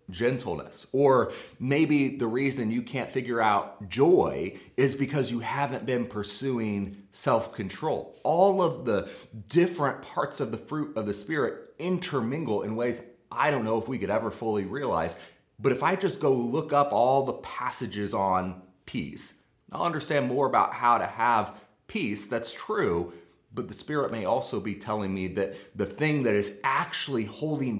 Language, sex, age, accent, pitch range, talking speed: English, male, 30-49, American, 105-140 Hz, 165 wpm